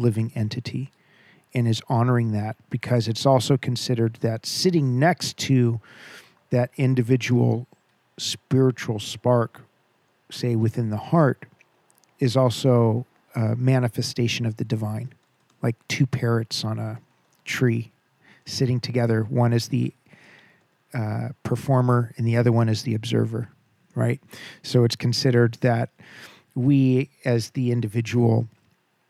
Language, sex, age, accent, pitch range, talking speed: English, male, 50-69, American, 115-130 Hz, 120 wpm